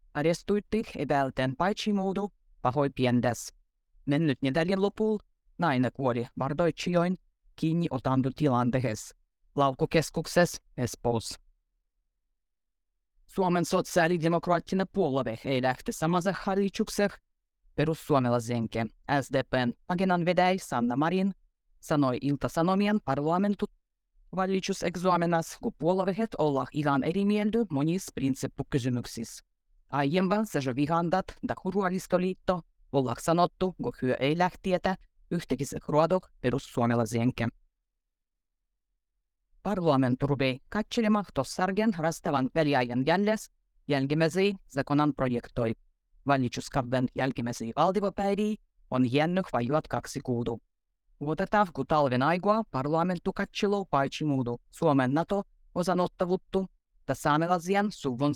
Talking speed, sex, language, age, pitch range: 90 wpm, female, Finnish, 20-39, 130-185 Hz